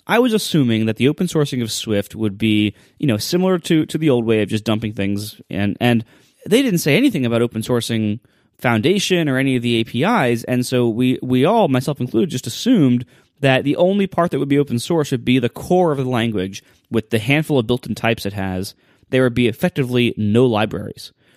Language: English